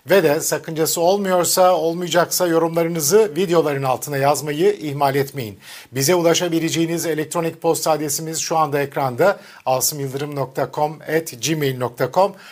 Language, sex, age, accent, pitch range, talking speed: Turkish, male, 50-69, native, 150-190 Hz, 100 wpm